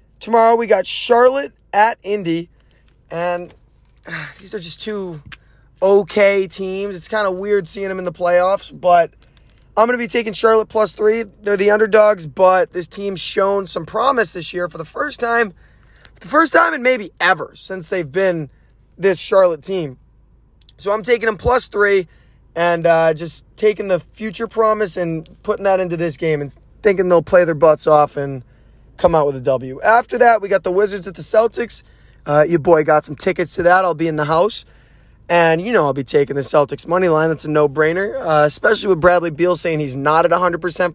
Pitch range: 155-205 Hz